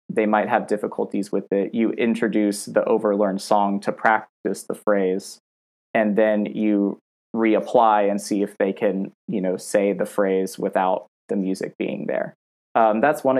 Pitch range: 105-115 Hz